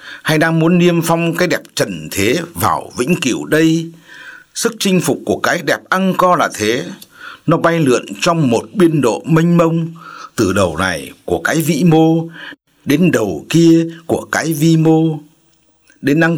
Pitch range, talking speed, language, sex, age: 160-180 Hz, 175 wpm, Vietnamese, male, 60-79